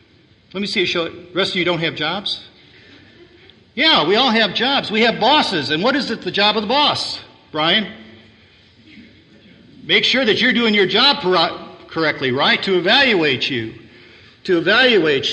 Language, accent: English, American